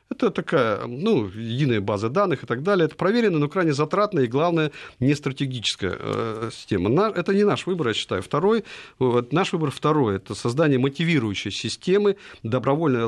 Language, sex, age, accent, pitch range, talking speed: Russian, male, 40-59, native, 120-165 Hz, 160 wpm